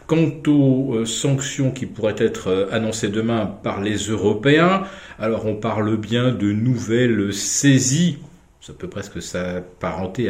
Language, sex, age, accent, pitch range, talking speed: French, male, 50-69, French, 100-130 Hz, 130 wpm